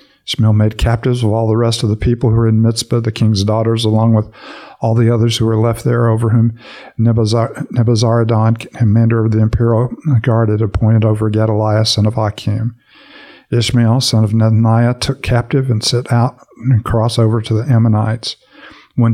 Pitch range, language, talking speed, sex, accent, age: 110-120 Hz, English, 180 wpm, male, American, 50-69